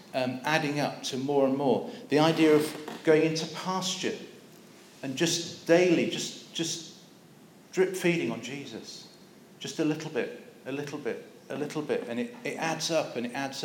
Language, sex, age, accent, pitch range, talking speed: English, male, 40-59, British, 135-170 Hz, 175 wpm